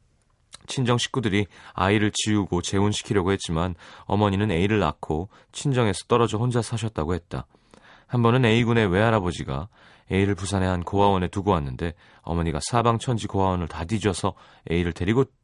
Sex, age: male, 30-49